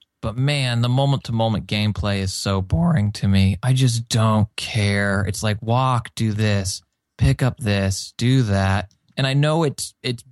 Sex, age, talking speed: male, 20-39, 170 wpm